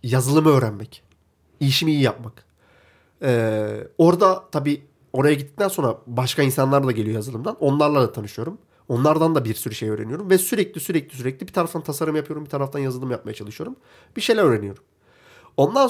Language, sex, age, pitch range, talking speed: Turkish, male, 40-59, 125-190 Hz, 160 wpm